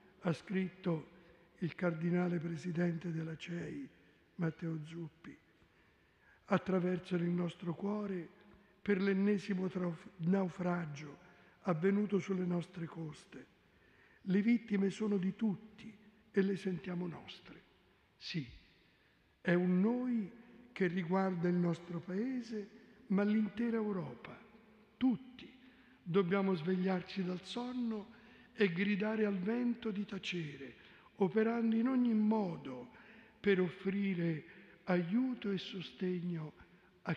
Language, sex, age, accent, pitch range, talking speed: Italian, male, 60-79, native, 175-210 Hz, 100 wpm